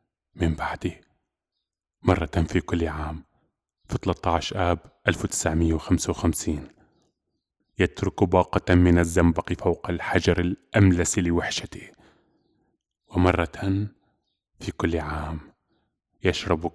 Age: 20-39